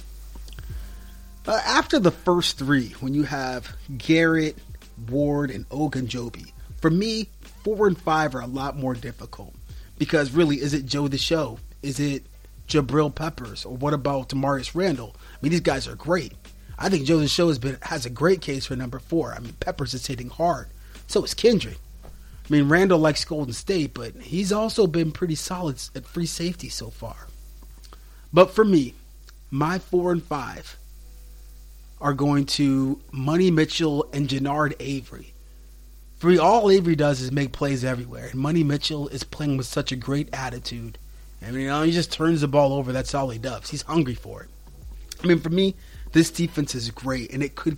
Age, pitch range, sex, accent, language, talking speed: 30-49, 115-160 Hz, male, American, English, 185 wpm